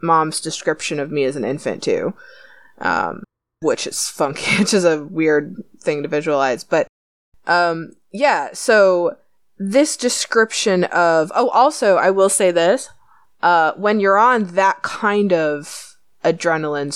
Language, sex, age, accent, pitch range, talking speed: English, female, 20-39, American, 155-200 Hz, 140 wpm